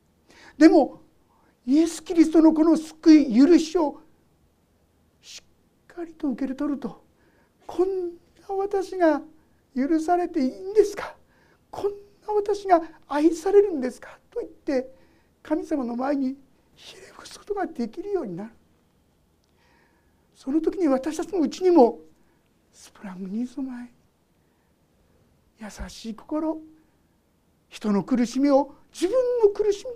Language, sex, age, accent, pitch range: Japanese, male, 50-69, native, 235-335 Hz